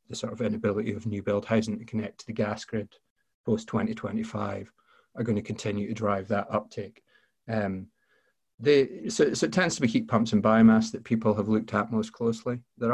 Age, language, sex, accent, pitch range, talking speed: 30-49, English, male, British, 100-120 Hz, 215 wpm